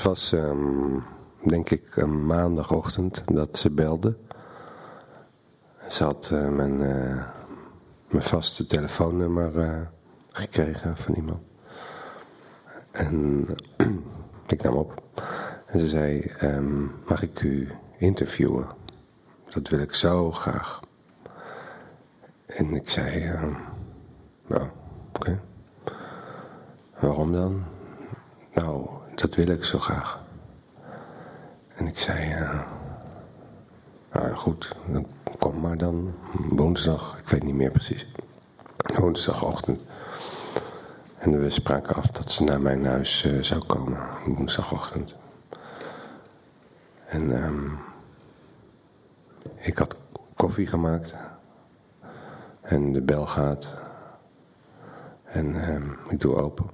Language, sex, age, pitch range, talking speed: Dutch, male, 50-69, 70-85 Hz, 100 wpm